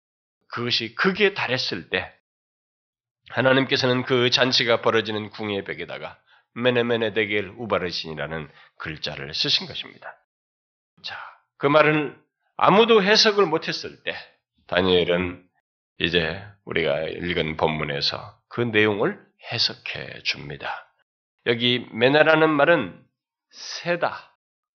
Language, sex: Korean, male